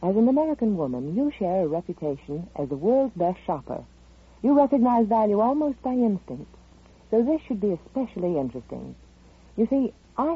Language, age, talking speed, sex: English, 60-79, 160 wpm, female